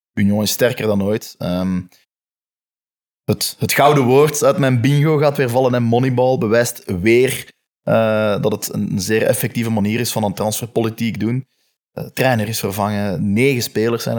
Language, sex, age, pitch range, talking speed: Dutch, male, 20-39, 100-115 Hz, 165 wpm